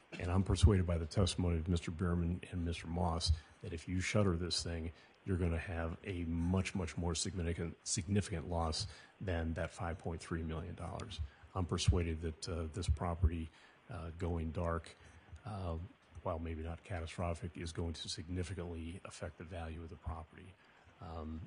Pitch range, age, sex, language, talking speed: 85-95 Hz, 30-49, male, English, 160 wpm